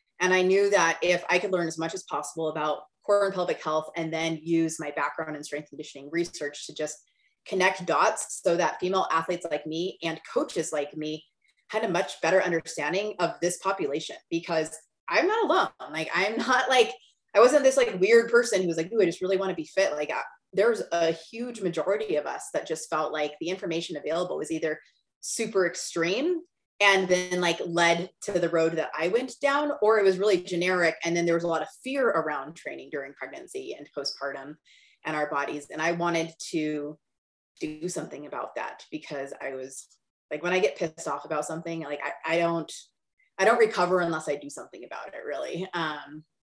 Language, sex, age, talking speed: English, female, 20-39, 205 wpm